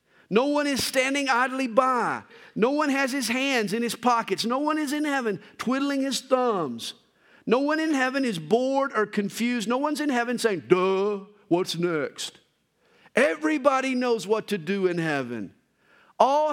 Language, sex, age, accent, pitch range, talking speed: English, male, 50-69, American, 175-260 Hz, 165 wpm